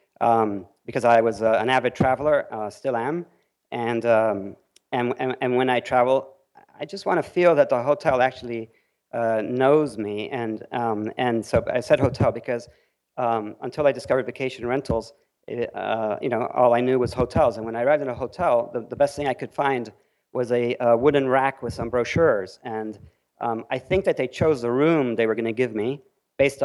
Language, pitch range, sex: English, 110-135 Hz, male